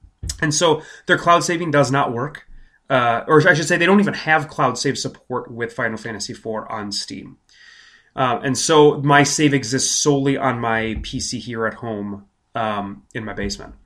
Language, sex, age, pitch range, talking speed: English, male, 30-49, 115-160 Hz, 185 wpm